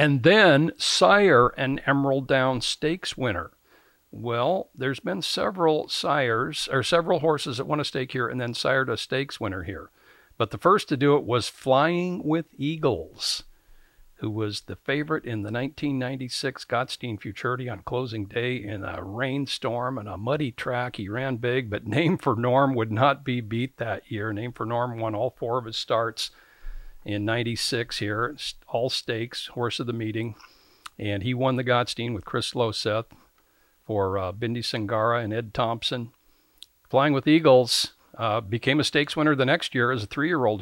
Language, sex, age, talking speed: English, male, 60-79, 175 wpm